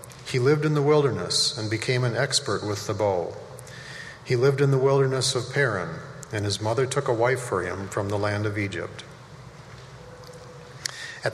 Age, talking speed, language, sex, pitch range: 40-59, 175 wpm, English, male, 115-140 Hz